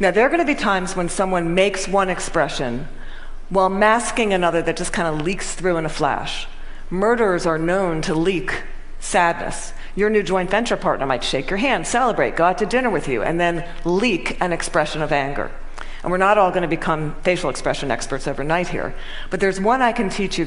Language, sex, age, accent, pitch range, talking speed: English, female, 40-59, American, 160-205 Hz, 210 wpm